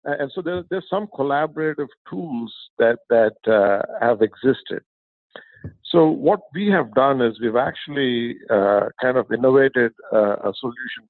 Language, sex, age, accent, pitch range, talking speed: English, male, 50-69, Indian, 115-145 Hz, 140 wpm